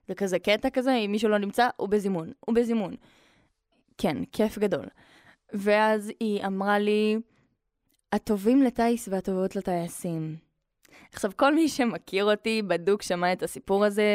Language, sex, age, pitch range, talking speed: Hebrew, female, 20-39, 195-245 Hz, 135 wpm